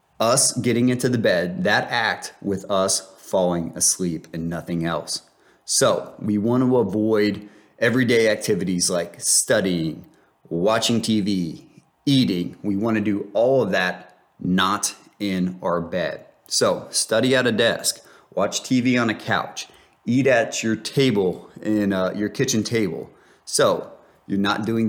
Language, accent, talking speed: English, American, 145 wpm